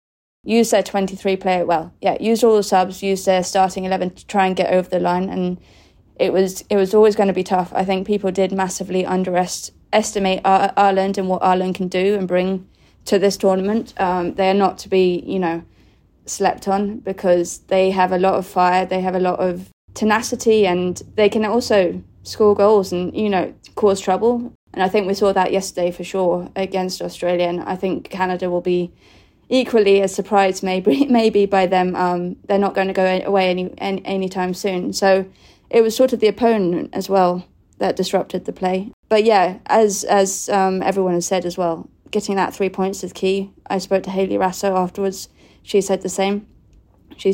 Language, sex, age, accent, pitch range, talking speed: English, female, 20-39, British, 185-200 Hz, 200 wpm